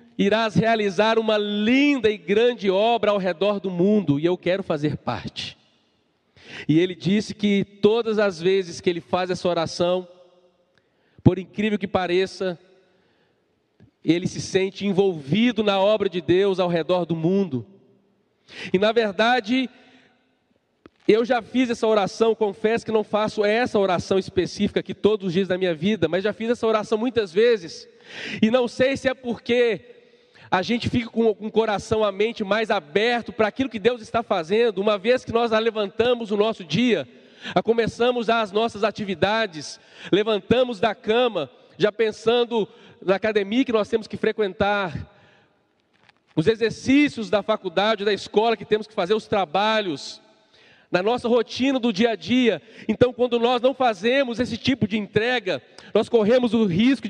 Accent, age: Brazilian, 40-59